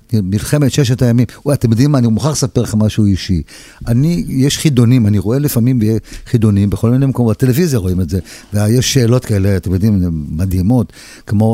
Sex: male